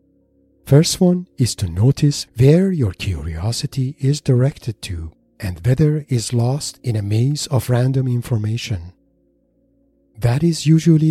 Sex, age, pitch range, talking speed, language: male, 50-69, 95-130 Hz, 135 wpm, English